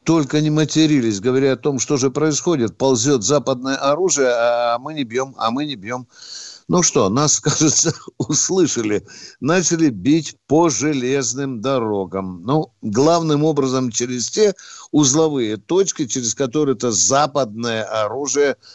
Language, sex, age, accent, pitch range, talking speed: Russian, male, 60-79, native, 130-165 Hz, 130 wpm